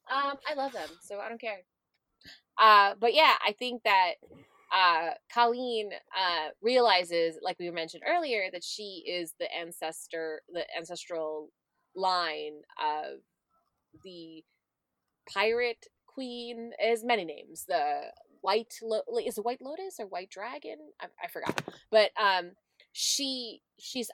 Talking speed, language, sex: 135 wpm, English, female